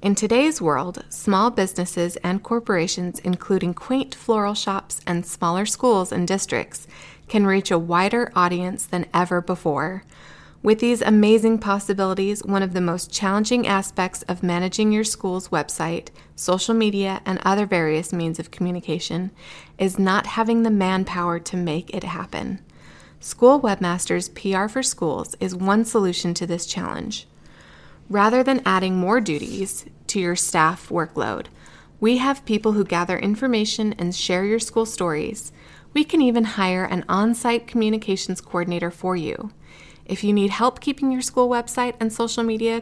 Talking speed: 150 wpm